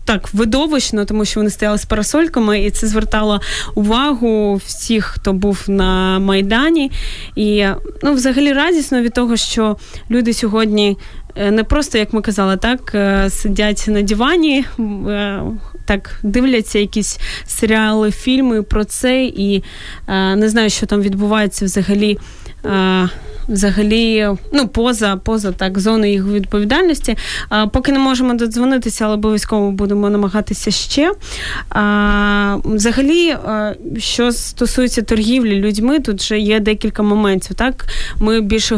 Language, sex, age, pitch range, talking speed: Ukrainian, female, 20-39, 200-235 Hz, 130 wpm